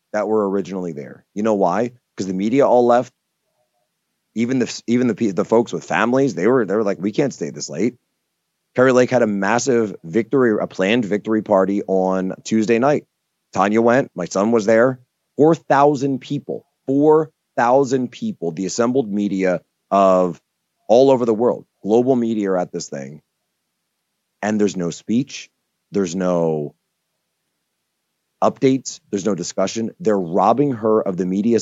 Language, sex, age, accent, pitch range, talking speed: English, male, 30-49, American, 95-135 Hz, 160 wpm